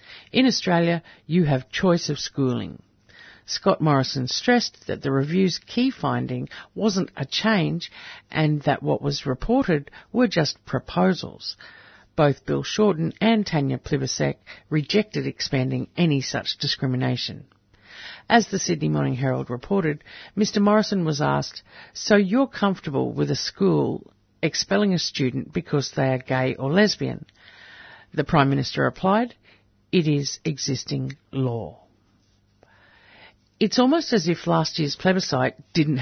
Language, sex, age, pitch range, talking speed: English, female, 50-69, 130-185 Hz, 130 wpm